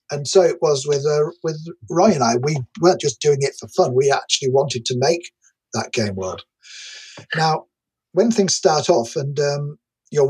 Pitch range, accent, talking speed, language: 130-175 Hz, British, 190 wpm, English